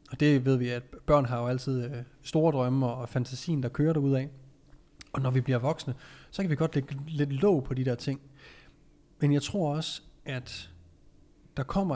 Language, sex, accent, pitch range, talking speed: Danish, male, native, 125-150 Hz, 195 wpm